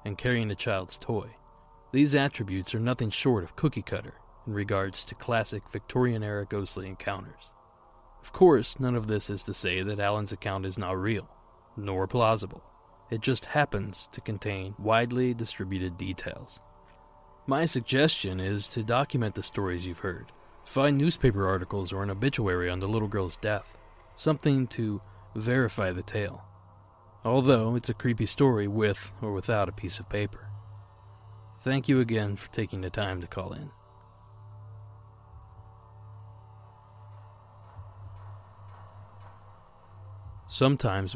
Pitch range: 100-115 Hz